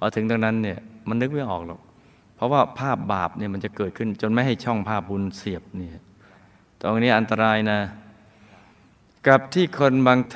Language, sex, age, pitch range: Thai, male, 20-39, 95-115 Hz